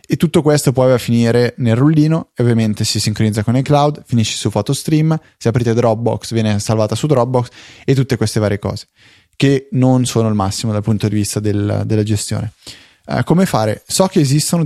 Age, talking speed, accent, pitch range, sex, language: 20-39, 195 wpm, native, 105-130 Hz, male, Italian